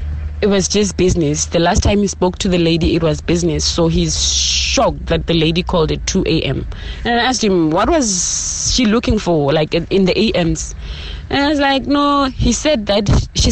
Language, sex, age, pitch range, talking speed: English, female, 20-39, 155-225 Hz, 205 wpm